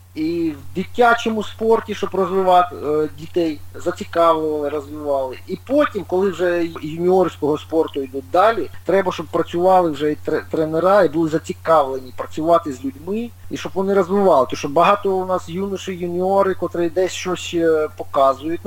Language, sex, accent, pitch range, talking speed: Ukrainian, male, native, 140-185 Hz, 140 wpm